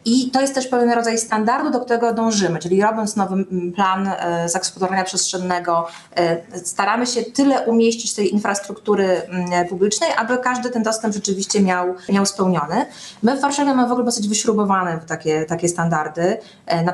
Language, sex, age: Polish, female, 20-39